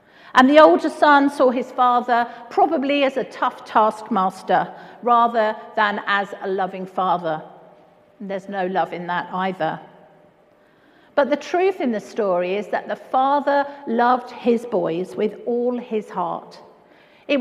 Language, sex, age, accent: English, female, 50-69, British